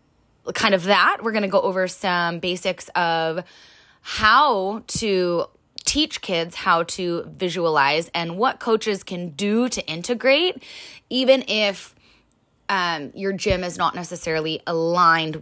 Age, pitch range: 20-39, 175-225 Hz